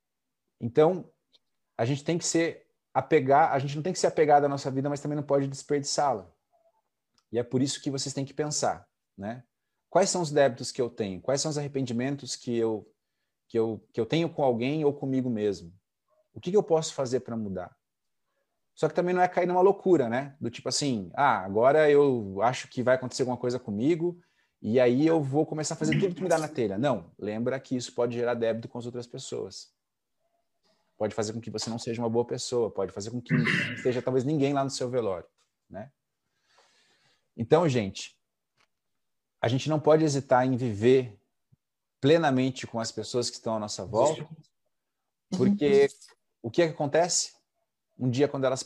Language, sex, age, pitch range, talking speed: Portuguese, male, 30-49, 115-150 Hz, 195 wpm